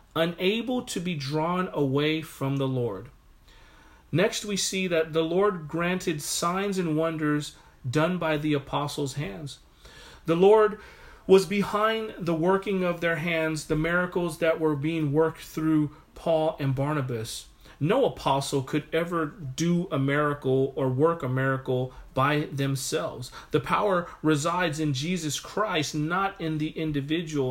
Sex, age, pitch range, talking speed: male, 40-59, 145-175 Hz, 140 wpm